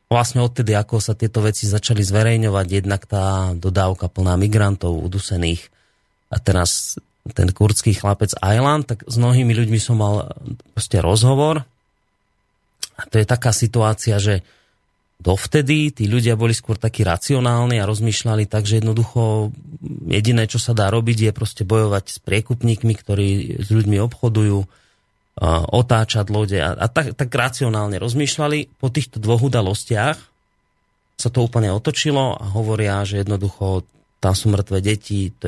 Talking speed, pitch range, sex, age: 140 wpm, 100-120 Hz, male, 30-49